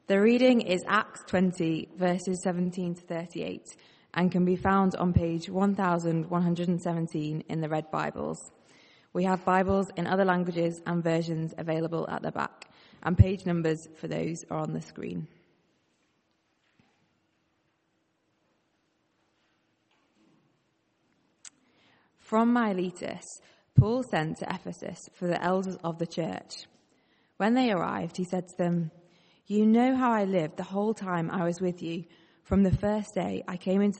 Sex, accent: female, British